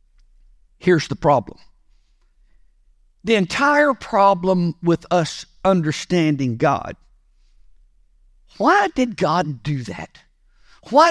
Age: 50-69